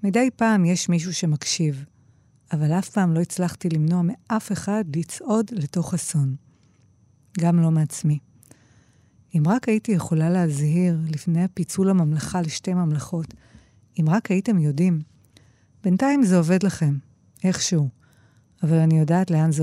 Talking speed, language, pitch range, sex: 130 wpm, Hebrew, 135-185 Hz, female